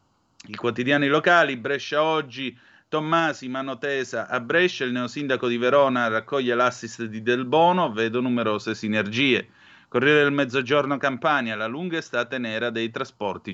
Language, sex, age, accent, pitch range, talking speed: Italian, male, 30-49, native, 115-140 Hz, 135 wpm